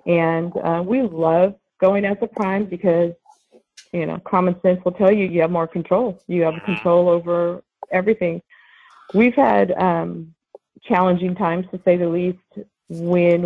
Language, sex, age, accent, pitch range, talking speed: English, female, 40-59, American, 170-195 Hz, 155 wpm